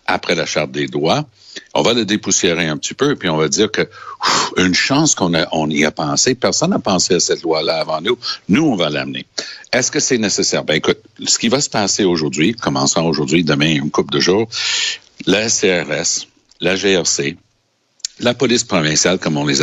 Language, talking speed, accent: French, 210 wpm, Canadian